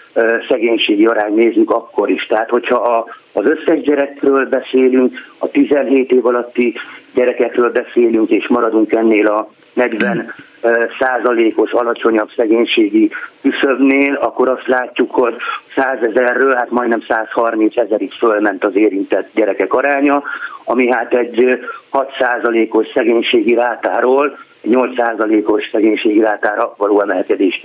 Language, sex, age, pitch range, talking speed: Hungarian, male, 50-69, 120-140 Hz, 115 wpm